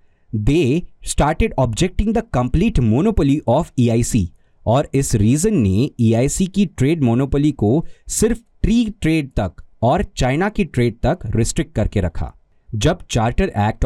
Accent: native